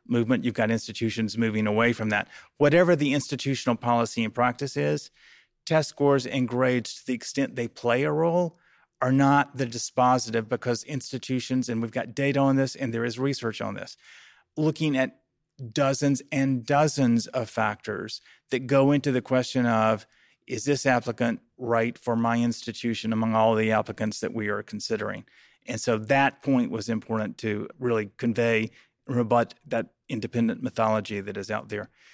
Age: 30-49